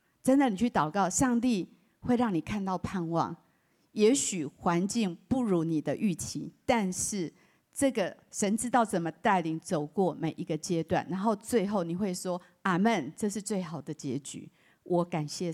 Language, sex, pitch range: Chinese, female, 175-235 Hz